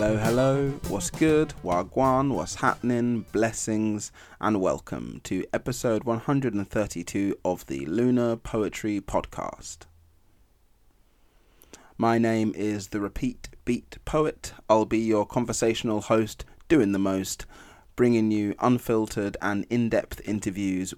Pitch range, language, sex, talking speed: 95-115 Hz, English, male, 110 wpm